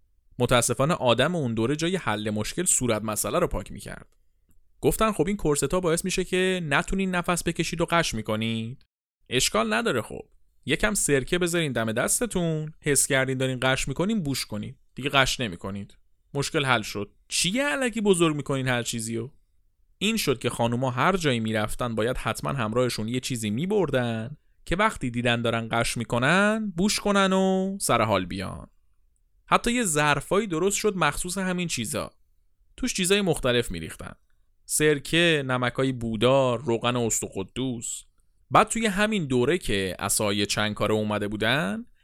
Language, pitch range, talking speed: Persian, 110-175 Hz, 150 wpm